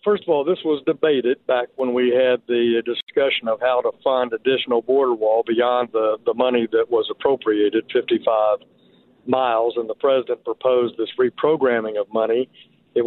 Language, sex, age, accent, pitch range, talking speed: English, male, 50-69, American, 115-135 Hz, 170 wpm